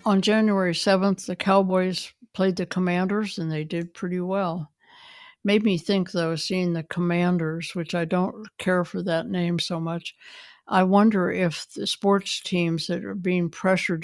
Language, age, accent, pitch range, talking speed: English, 60-79, American, 165-195 Hz, 165 wpm